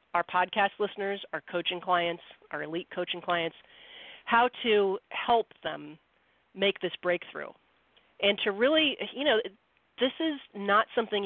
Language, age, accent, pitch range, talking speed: English, 40-59, American, 180-235 Hz, 140 wpm